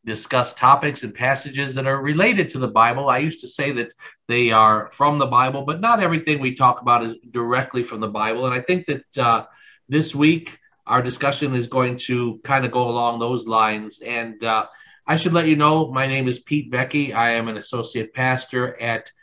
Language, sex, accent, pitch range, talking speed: English, male, American, 115-145 Hz, 210 wpm